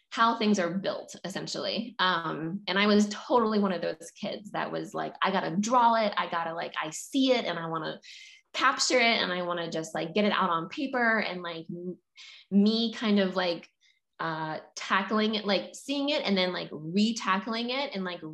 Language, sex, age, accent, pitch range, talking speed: English, female, 20-39, American, 170-225 Hz, 205 wpm